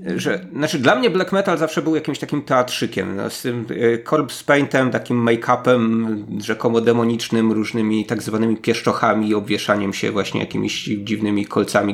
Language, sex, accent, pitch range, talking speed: Polish, male, native, 115-150 Hz, 155 wpm